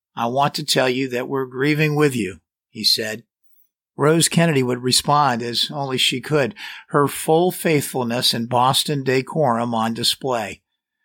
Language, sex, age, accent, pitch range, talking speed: English, male, 50-69, American, 120-165 Hz, 150 wpm